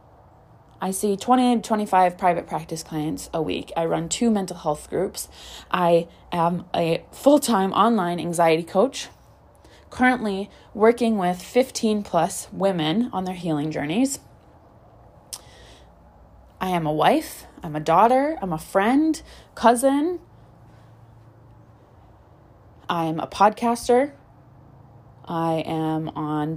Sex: female